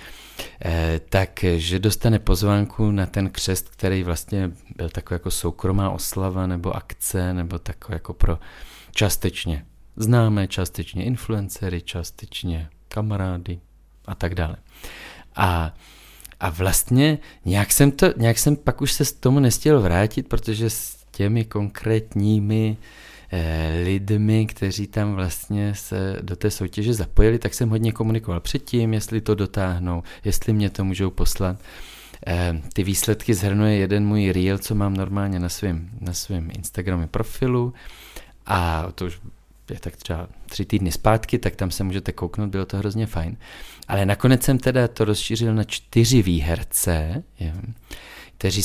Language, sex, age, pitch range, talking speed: Czech, male, 30-49, 90-110 Hz, 140 wpm